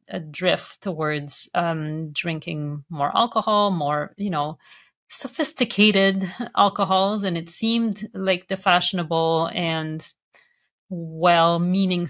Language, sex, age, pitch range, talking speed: English, female, 40-59, 170-220 Hz, 95 wpm